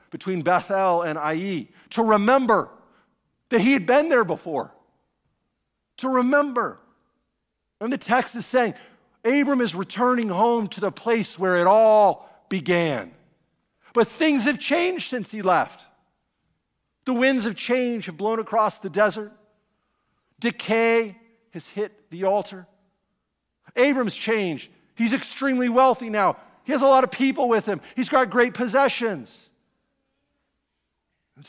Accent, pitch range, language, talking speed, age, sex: American, 185-245 Hz, English, 135 wpm, 50-69, male